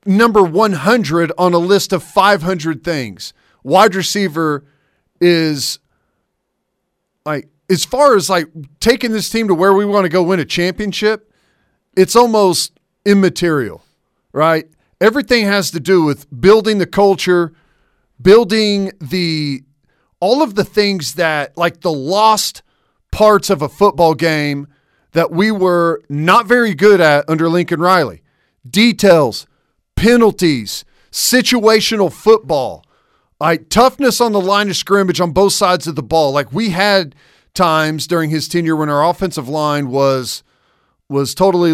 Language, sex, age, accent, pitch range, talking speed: English, male, 40-59, American, 155-200 Hz, 140 wpm